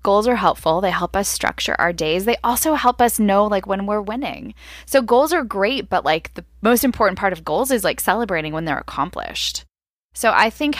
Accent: American